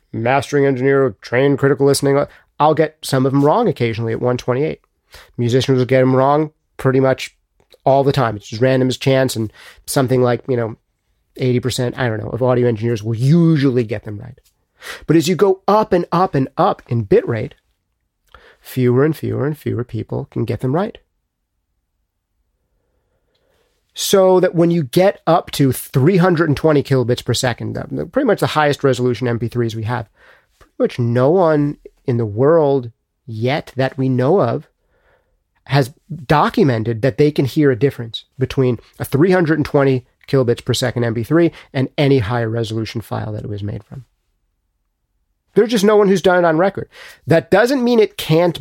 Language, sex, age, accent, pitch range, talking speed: English, male, 40-59, American, 120-155 Hz, 170 wpm